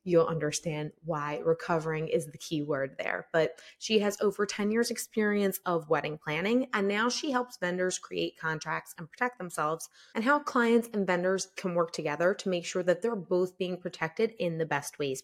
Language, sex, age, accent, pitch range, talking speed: English, female, 20-39, American, 165-205 Hz, 195 wpm